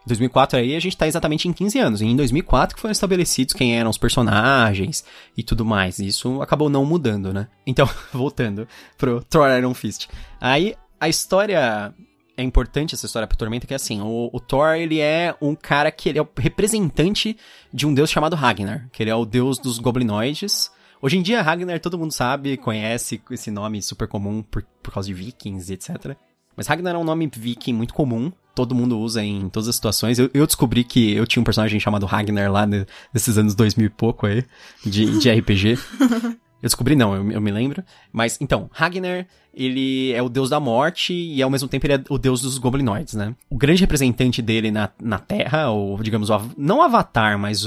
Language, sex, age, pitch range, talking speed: Portuguese, male, 20-39, 110-145 Hz, 210 wpm